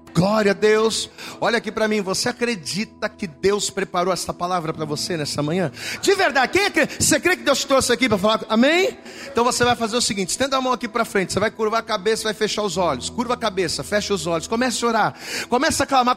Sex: male